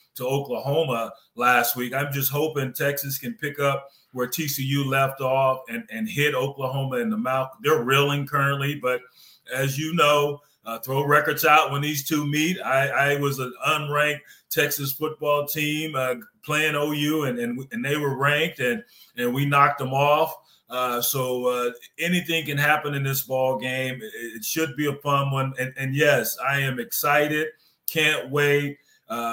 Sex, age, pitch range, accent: male, 30-49, 125-145 Hz, American